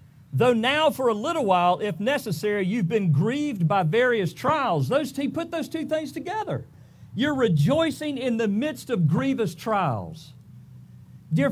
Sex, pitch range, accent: male, 145-230 Hz, American